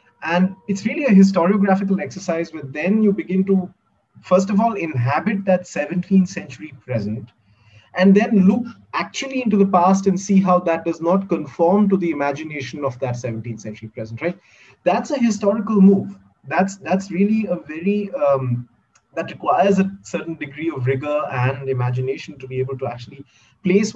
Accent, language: Indian, English